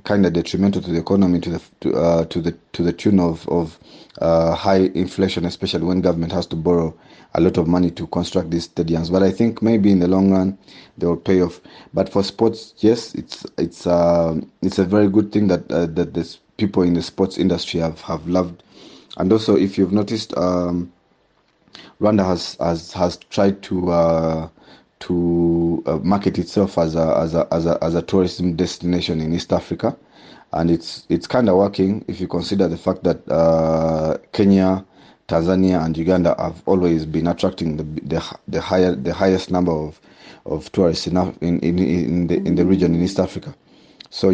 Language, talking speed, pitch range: English, 195 wpm, 85-95 Hz